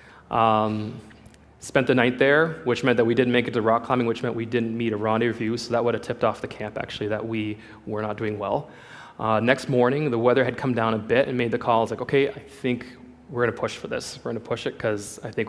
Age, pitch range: 20-39, 110-125 Hz